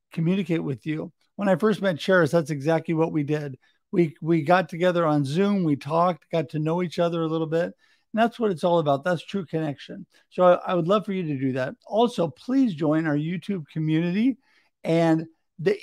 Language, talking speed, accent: English, 210 wpm, American